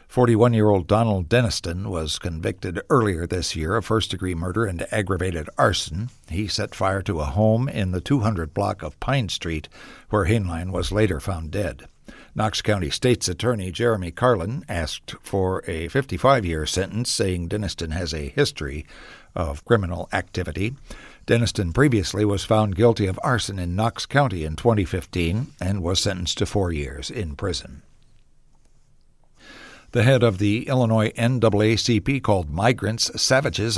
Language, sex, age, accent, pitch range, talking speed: English, male, 60-79, American, 90-115 Hz, 145 wpm